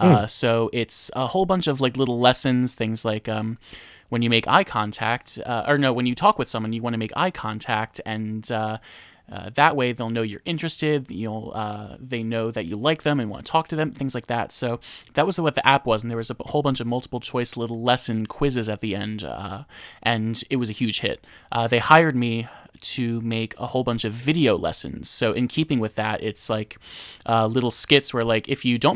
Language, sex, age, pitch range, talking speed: English, male, 20-39, 110-140 Hz, 240 wpm